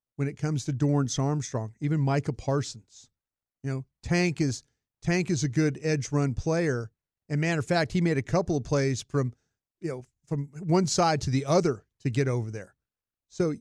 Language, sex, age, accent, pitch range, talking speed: English, male, 40-59, American, 140-180 Hz, 195 wpm